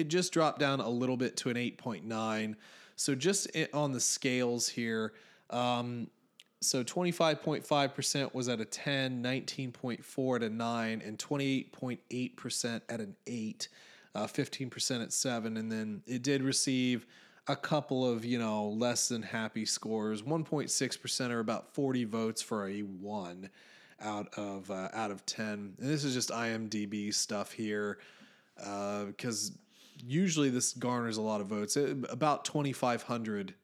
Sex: male